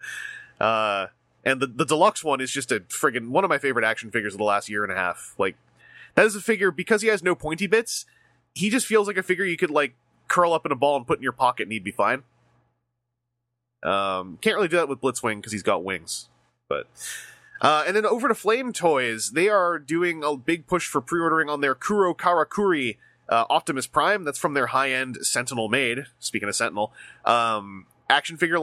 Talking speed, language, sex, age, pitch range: 215 wpm, English, male, 20-39, 120-175 Hz